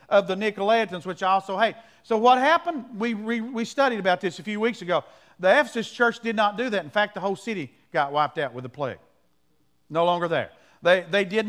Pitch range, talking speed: 175-230 Hz, 230 wpm